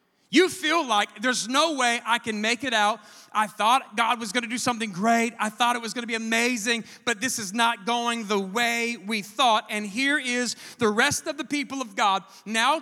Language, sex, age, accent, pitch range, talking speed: English, male, 30-49, American, 235-340 Hz, 225 wpm